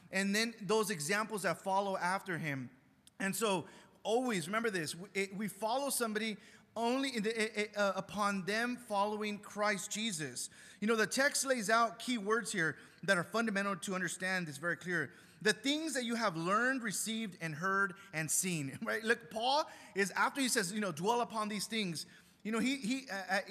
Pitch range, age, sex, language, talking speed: 185-230 Hz, 30-49, male, English, 180 wpm